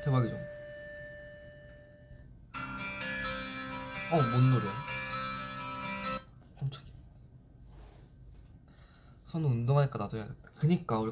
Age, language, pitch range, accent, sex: 20-39, Korean, 120-140 Hz, native, male